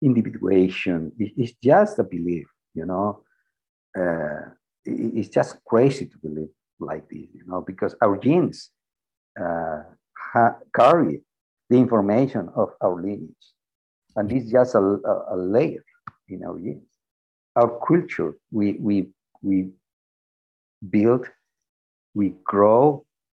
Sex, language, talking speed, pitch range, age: male, English, 120 wpm, 85-115 Hz, 50-69